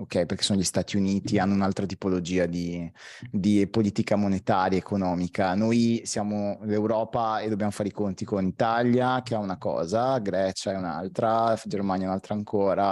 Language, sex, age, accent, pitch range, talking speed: Italian, male, 30-49, native, 95-115 Hz, 165 wpm